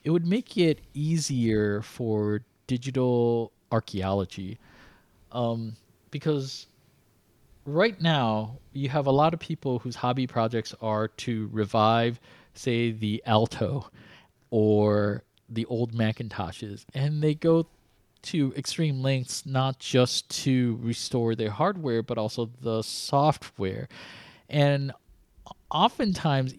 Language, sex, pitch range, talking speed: English, male, 115-140 Hz, 110 wpm